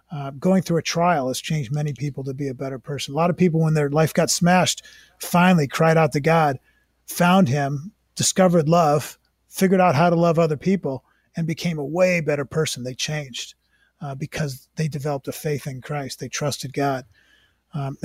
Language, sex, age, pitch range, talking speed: English, male, 40-59, 140-170 Hz, 195 wpm